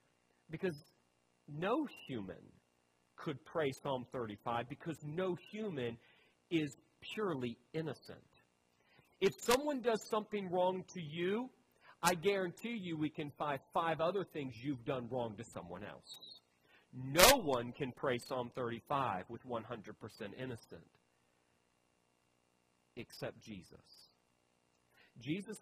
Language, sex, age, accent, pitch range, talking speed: English, male, 40-59, American, 115-180 Hz, 110 wpm